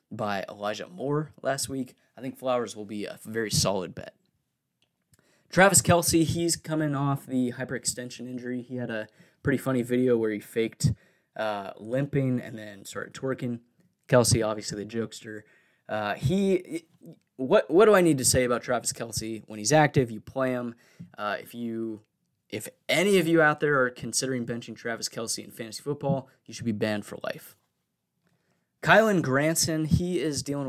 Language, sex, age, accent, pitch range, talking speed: English, male, 20-39, American, 115-140 Hz, 170 wpm